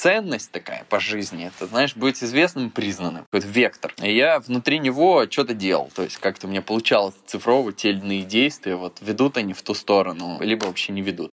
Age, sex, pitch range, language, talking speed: 20-39, male, 105-140 Hz, Russian, 190 wpm